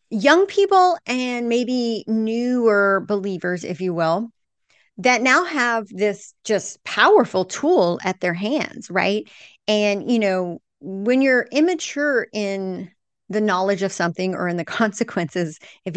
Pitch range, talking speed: 180-240 Hz, 135 wpm